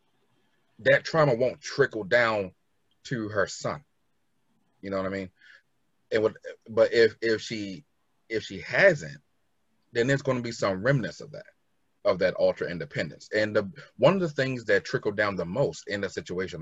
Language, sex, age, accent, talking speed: English, male, 30-49, American, 175 wpm